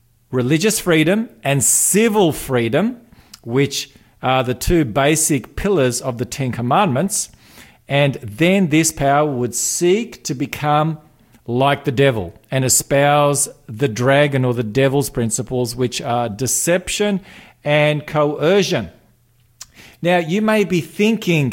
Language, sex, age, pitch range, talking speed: English, male, 50-69, 125-165 Hz, 125 wpm